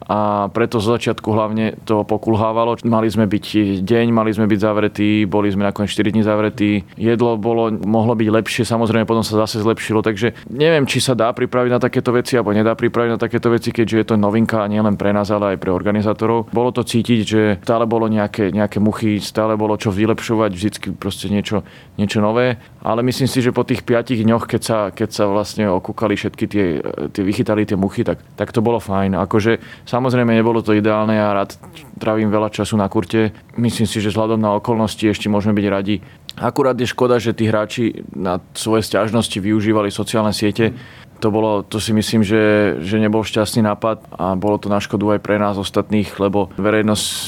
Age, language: 30-49, Slovak